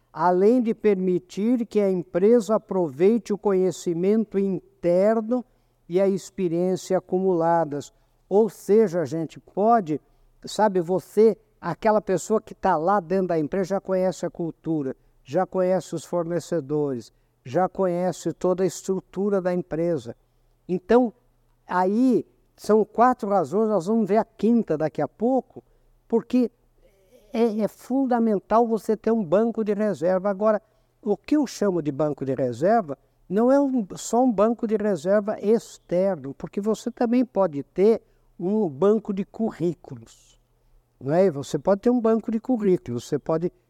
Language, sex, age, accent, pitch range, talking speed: Portuguese, male, 60-79, Brazilian, 160-215 Hz, 145 wpm